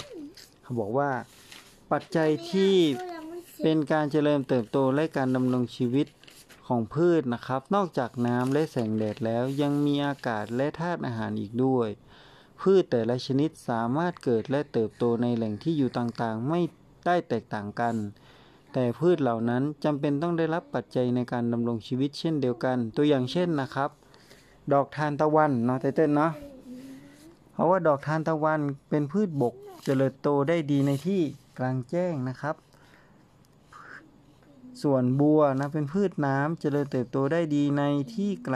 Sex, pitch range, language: male, 125-155 Hz, Thai